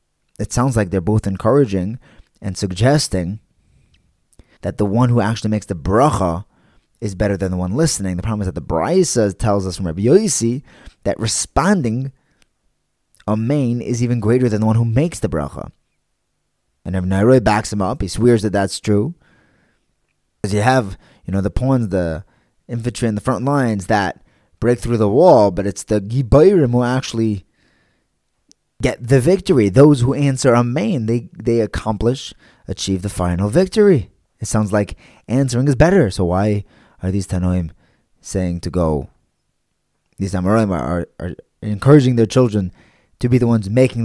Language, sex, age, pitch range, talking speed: English, male, 20-39, 95-130 Hz, 170 wpm